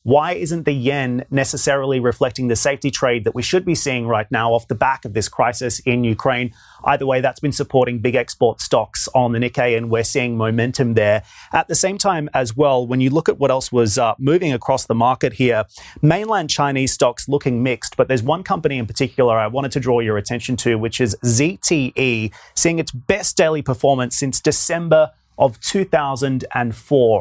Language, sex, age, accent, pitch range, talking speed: English, male, 30-49, Australian, 115-140 Hz, 195 wpm